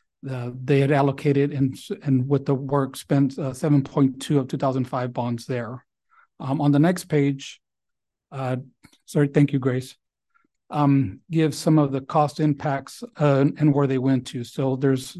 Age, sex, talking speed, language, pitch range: 40-59, male, 160 wpm, English, 135-155 Hz